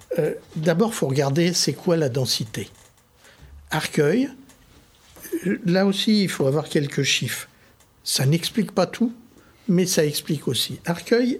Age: 60-79